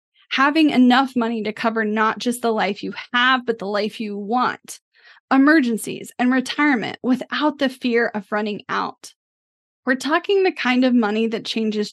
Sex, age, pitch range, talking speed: female, 10-29, 220-265 Hz, 165 wpm